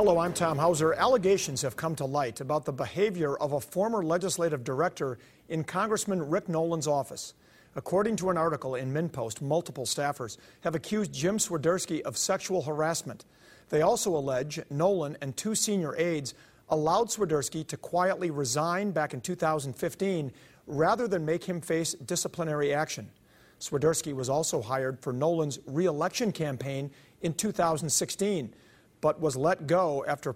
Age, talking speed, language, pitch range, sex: 50-69, 150 wpm, English, 145-180 Hz, male